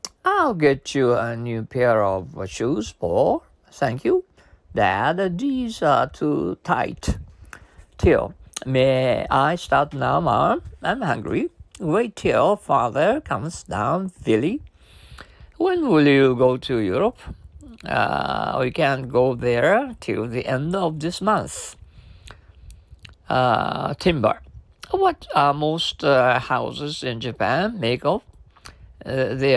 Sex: male